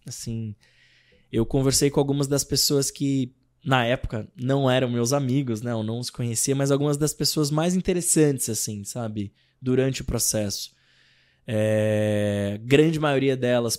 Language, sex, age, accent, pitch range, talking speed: Portuguese, male, 20-39, Brazilian, 120-145 Hz, 145 wpm